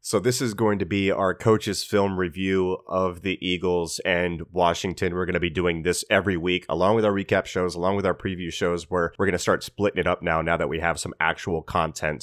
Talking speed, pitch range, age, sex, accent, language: 240 wpm, 85-95 Hz, 30-49, male, American, English